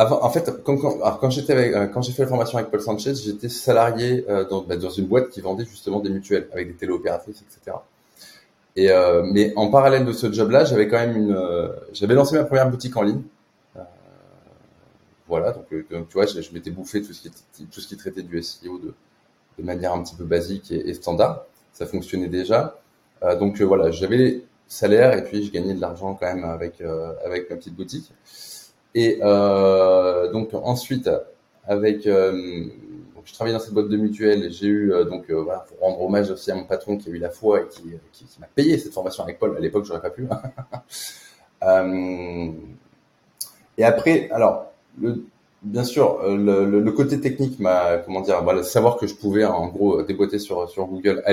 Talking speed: 195 wpm